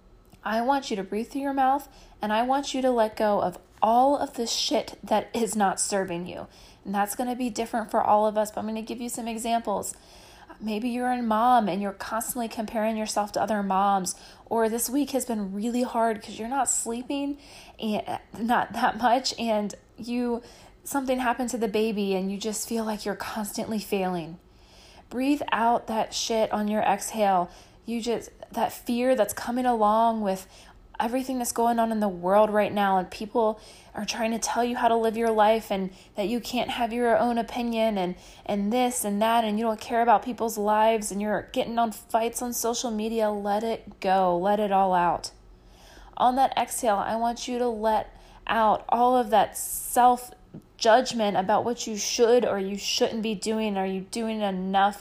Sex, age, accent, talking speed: female, 20-39, American, 200 wpm